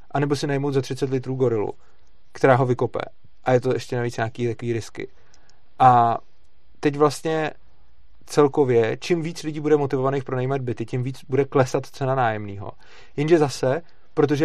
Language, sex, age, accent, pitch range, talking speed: Czech, male, 30-49, native, 120-165 Hz, 160 wpm